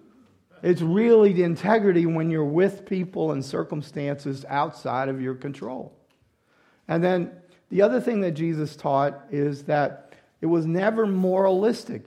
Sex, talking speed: male, 140 wpm